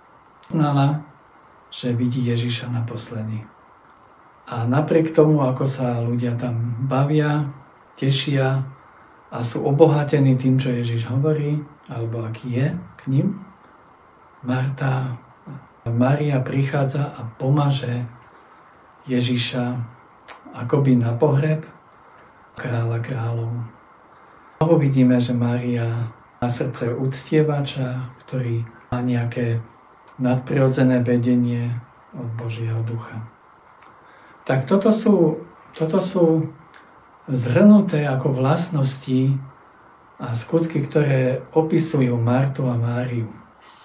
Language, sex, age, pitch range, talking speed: Slovak, male, 50-69, 120-150 Hz, 90 wpm